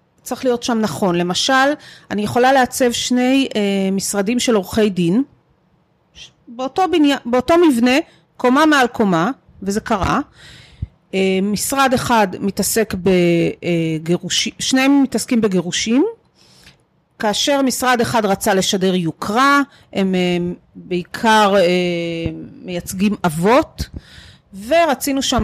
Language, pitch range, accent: Hebrew, 195-260 Hz, native